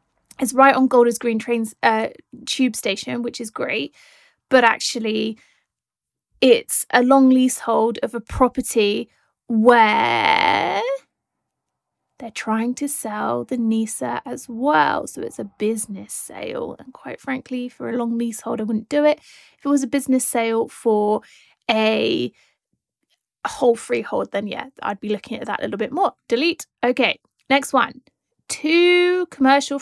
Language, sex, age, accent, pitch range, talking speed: English, female, 20-39, British, 230-300 Hz, 145 wpm